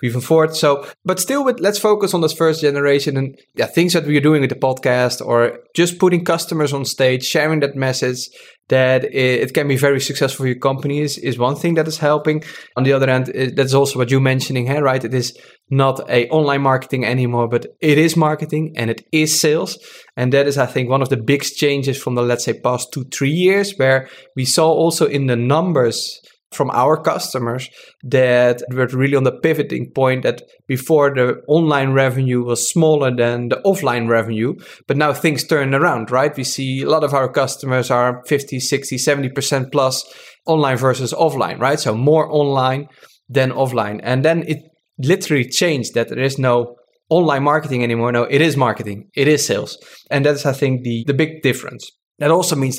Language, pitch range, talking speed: English, 130-155 Hz, 200 wpm